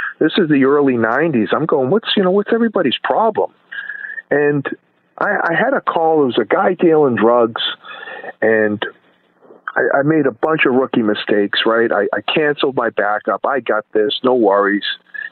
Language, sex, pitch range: English, male, 115-160 Hz